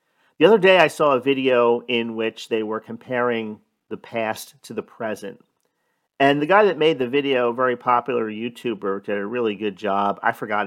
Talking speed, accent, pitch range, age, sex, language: 195 wpm, American, 105-120 Hz, 40-59, male, English